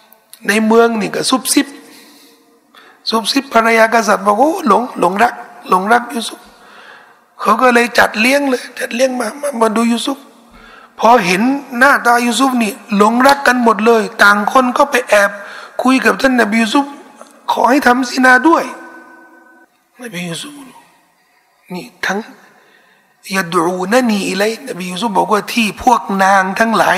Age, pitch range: 60-79, 190-245 Hz